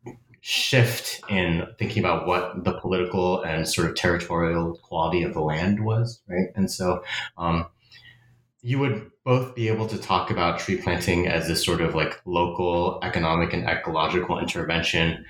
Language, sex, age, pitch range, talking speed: English, male, 20-39, 85-110 Hz, 155 wpm